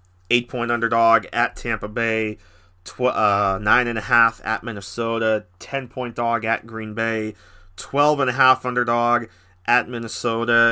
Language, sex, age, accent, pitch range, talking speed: English, male, 30-49, American, 95-115 Hz, 150 wpm